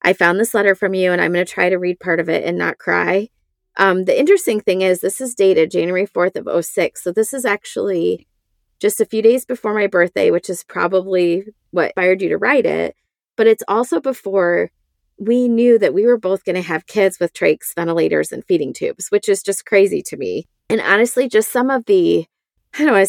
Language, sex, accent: English, female, American